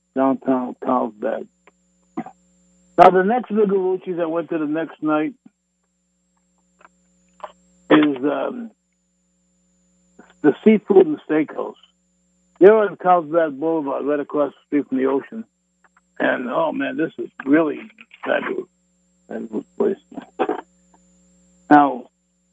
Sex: male